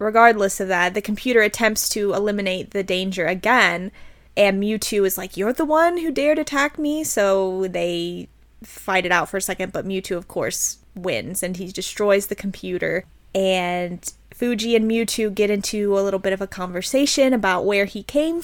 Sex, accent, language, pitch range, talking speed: female, American, English, 190-225 Hz, 180 wpm